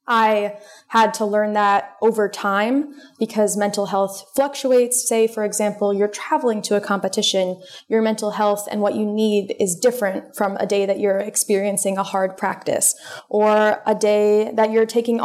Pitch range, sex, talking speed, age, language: 195-225 Hz, female, 170 wpm, 20-39, English